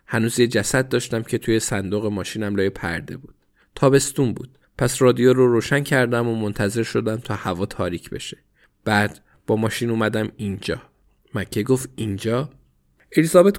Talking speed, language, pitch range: 150 wpm, Persian, 105-145 Hz